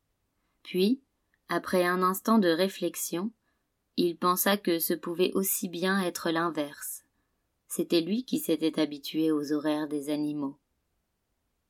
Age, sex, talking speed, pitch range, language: 20-39, female, 125 wpm, 160-205 Hz, French